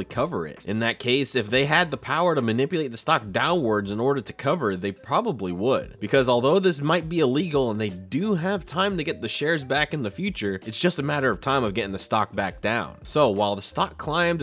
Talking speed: 240 wpm